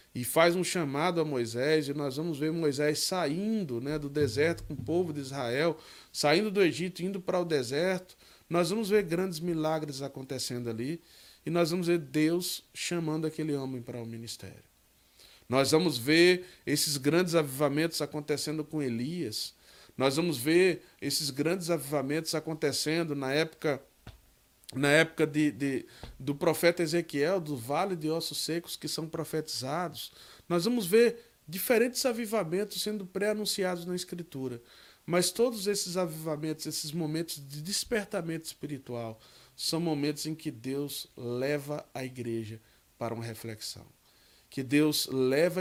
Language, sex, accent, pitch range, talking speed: Portuguese, male, Brazilian, 135-175 Hz, 140 wpm